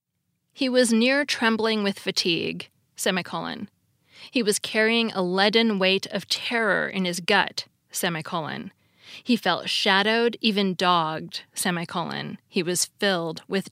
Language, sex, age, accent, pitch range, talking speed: English, female, 20-39, American, 180-235 Hz, 125 wpm